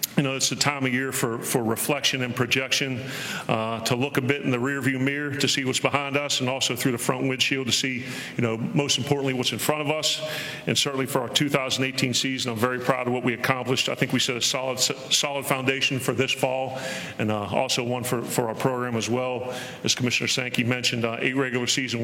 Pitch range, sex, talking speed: 120-130 Hz, male, 230 wpm